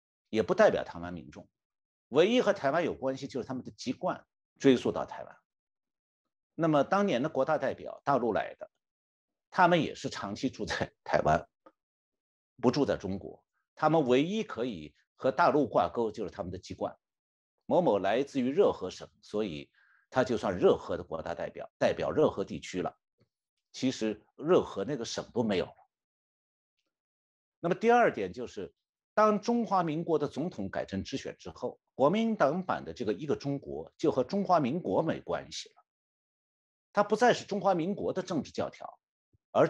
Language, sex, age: Chinese, male, 50-69